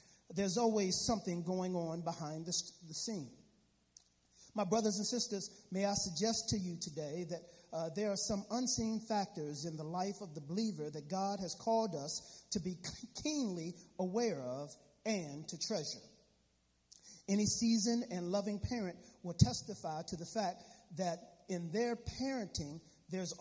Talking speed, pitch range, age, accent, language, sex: 155 wpm, 170-210 Hz, 40-59, American, English, male